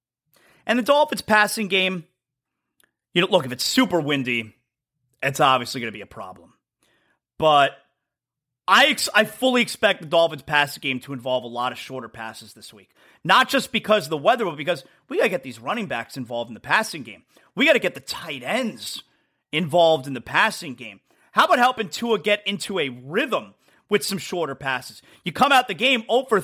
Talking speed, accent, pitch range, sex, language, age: 200 wpm, American, 135-215 Hz, male, English, 30-49